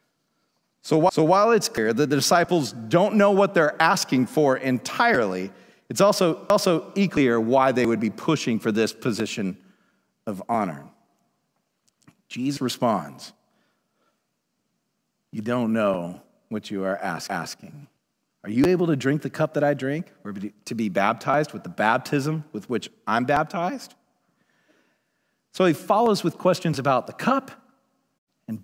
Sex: male